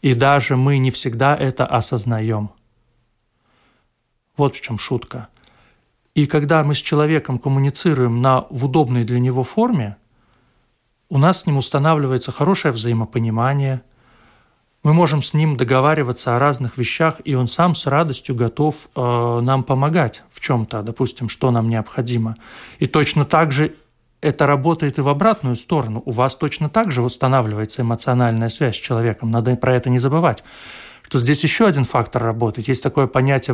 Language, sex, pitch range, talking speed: Russian, male, 120-145 Hz, 155 wpm